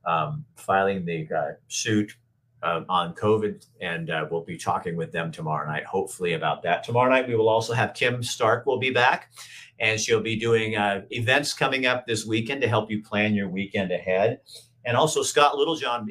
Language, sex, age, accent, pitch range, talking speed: English, male, 50-69, American, 105-145 Hz, 195 wpm